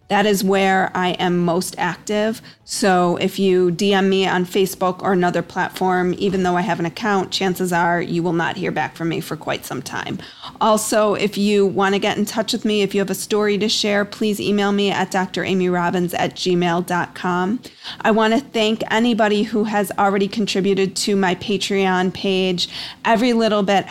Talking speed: 190 wpm